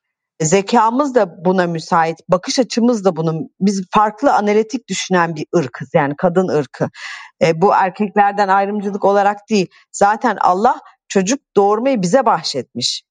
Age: 40-59